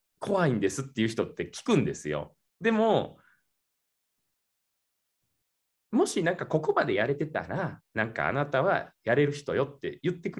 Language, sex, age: Japanese, male, 20-39